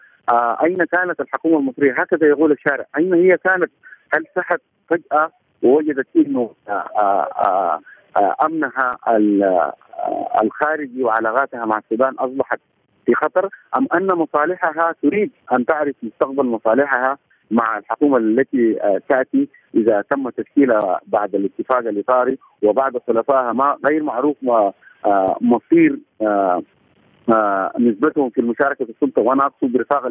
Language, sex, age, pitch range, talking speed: Arabic, male, 50-69, 115-150 Hz, 105 wpm